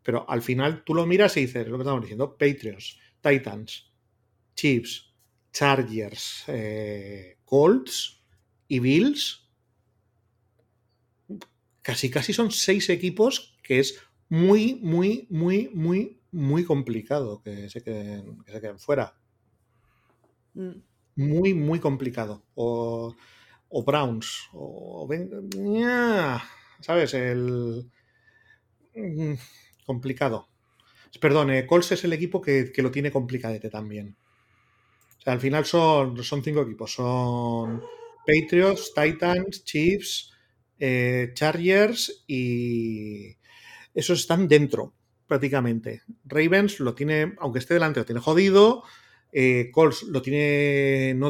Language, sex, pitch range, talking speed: Spanish, male, 115-165 Hz, 110 wpm